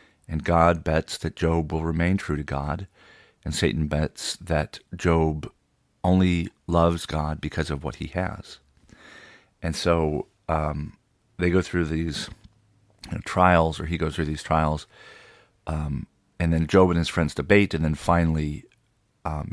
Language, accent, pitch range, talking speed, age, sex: English, American, 80-90 Hz, 150 wpm, 40-59, male